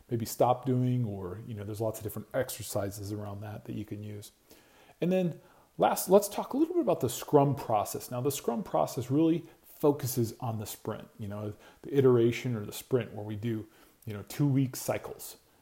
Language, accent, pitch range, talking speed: English, American, 110-145 Hz, 205 wpm